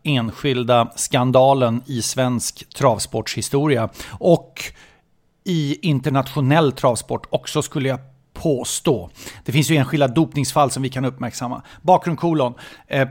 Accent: Swedish